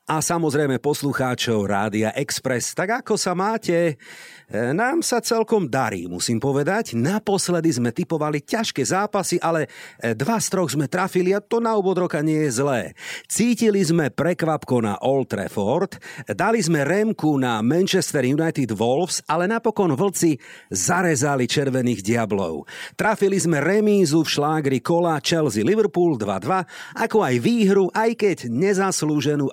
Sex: male